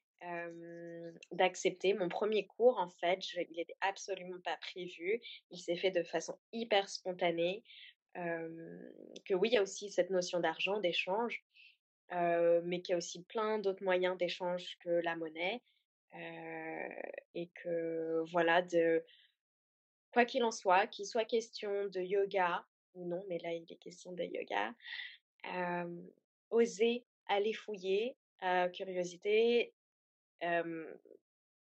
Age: 20-39